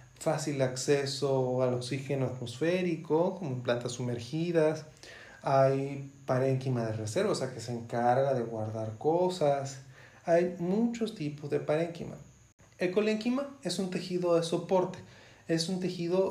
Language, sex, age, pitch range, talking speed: Spanish, male, 30-49, 135-180 Hz, 130 wpm